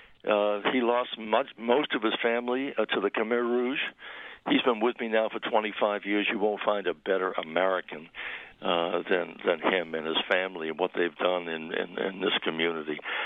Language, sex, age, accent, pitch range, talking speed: English, male, 60-79, American, 95-115 Hz, 195 wpm